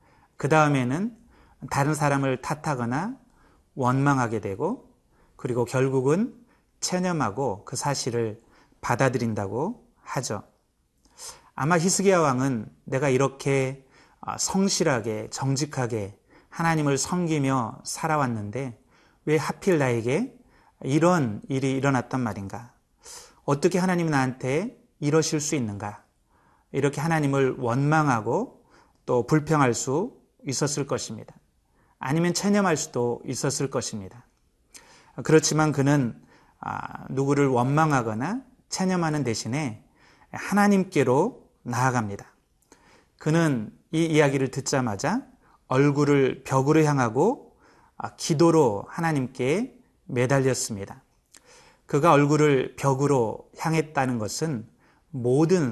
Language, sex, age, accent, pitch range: Korean, male, 30-49, native, 125-160 Hz